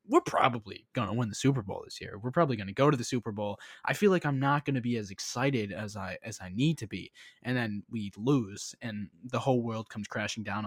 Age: 20-39